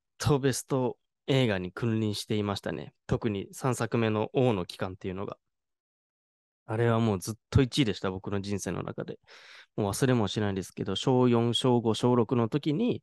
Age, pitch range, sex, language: 20-39, 100-130 Hz, male, Japanese